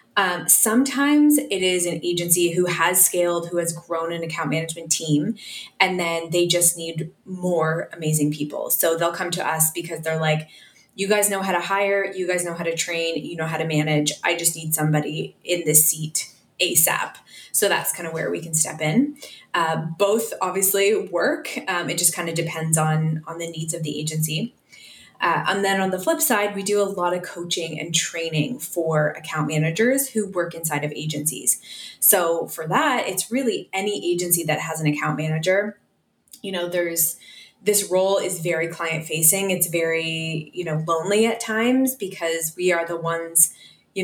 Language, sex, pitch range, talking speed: English, female, 160-195 Hz, 190 wpm